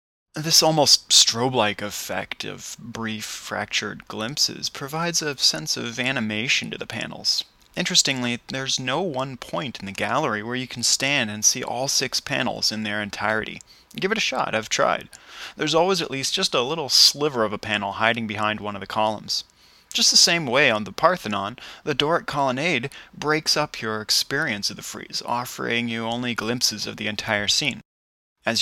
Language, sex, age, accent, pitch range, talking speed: English, male, 20-39, American, 105-130 Hz, 180 wpm